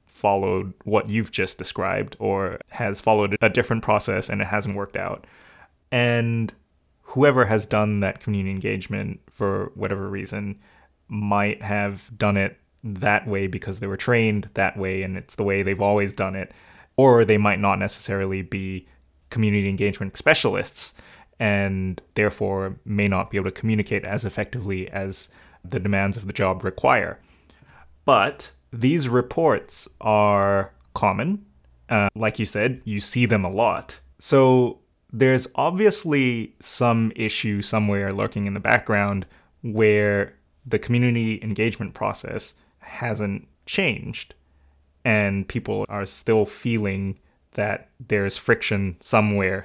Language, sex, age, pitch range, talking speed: English, male, 20-39, 95-110 Hz, 135 wpm